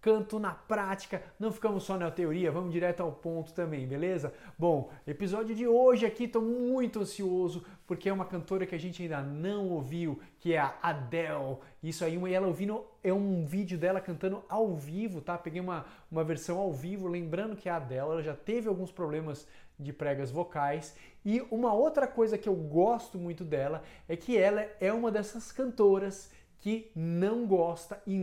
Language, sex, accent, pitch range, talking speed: Portuguese, male, Brazilian, 155-200 Hz, 185 wpm